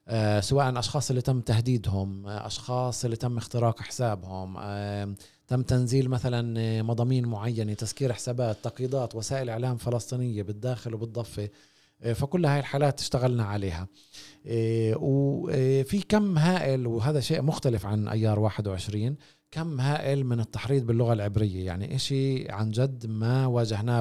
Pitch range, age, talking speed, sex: 110-140 Hz, 30-49, 120 wpm, male